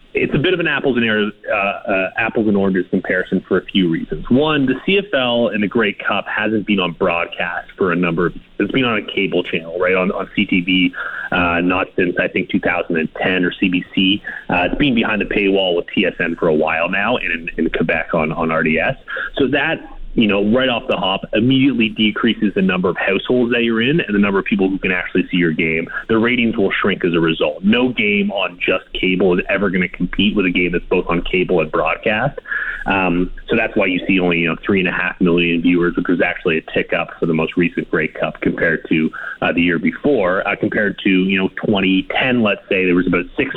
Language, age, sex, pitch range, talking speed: English, 30-49, male, 90-110 Hz, 235 wpm